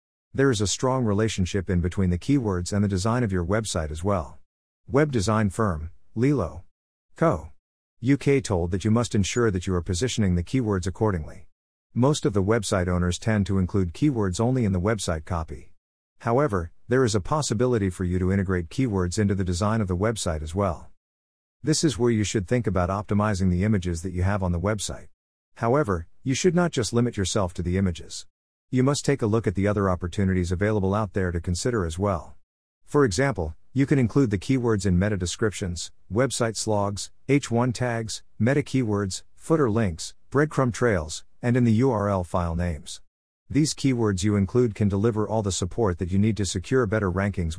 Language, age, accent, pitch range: English, 50-69, American, 90-115 Hz